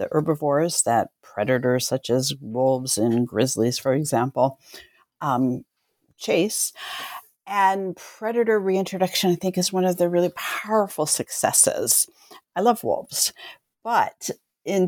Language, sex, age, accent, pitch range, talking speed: English, female, 50-69, American, 135-190 Hz, 120 wpm